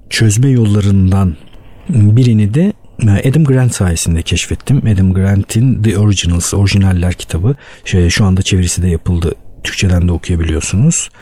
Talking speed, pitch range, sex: 120 wpm, 90-120 Hz, male